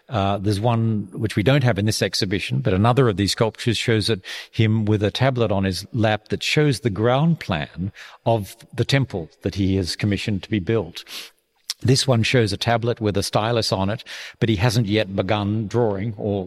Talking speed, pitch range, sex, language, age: 200 wpm, 100-120 Hz, male, English, 50-69